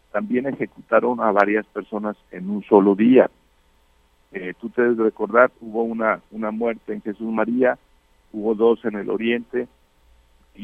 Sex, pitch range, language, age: male, 95-120 Hz, Spanish, 50-69